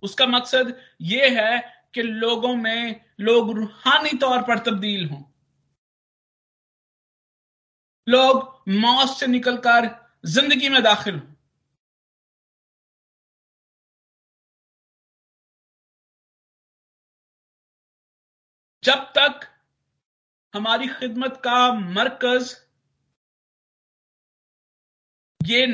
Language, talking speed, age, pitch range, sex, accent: Hindi, 65 wpm, 50-69, 195-250 Hz, male, native